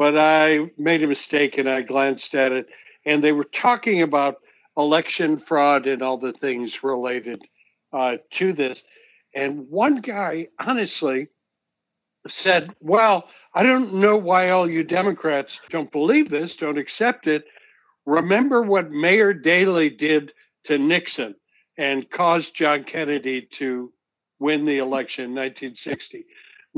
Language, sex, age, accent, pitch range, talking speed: English, male, 60-79, American, 145-205 Hz, 135 wpm